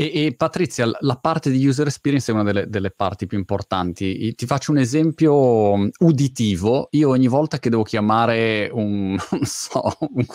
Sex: male